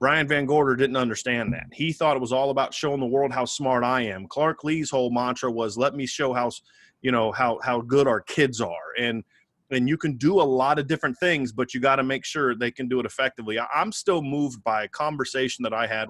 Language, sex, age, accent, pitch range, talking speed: English, male, 30-49, American, 125-155 Hz, 250 wpm